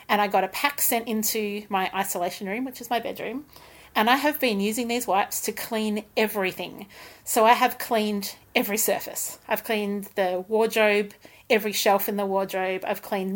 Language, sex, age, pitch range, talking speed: English, female, 30-49, 200-230 Hz, 185 wpm